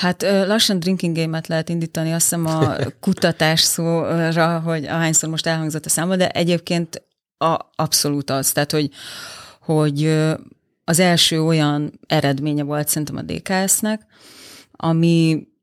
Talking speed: 130 wpm